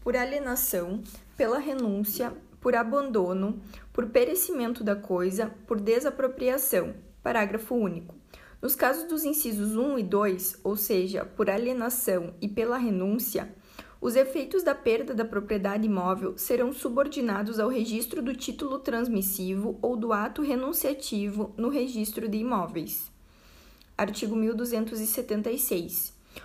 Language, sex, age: Portuguese, female, 20-39